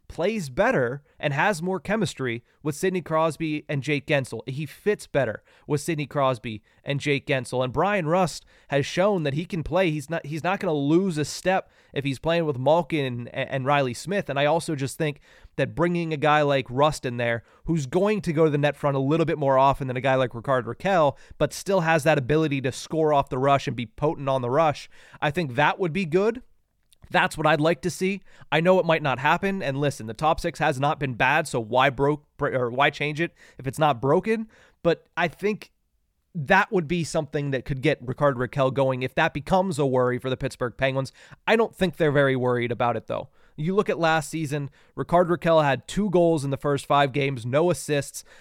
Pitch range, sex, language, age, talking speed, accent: 135-170 Hz, male, English, 30-49, 225 wpm, American